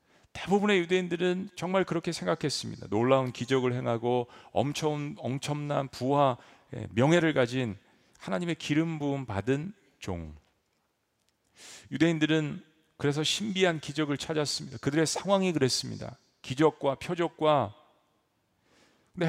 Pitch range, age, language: 120-160 Hz, 40-59, Korean